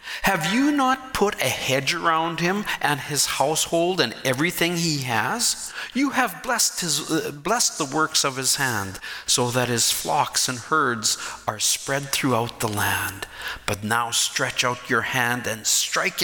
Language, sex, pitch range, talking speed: English, male, 115-170 Hz, 160 wpm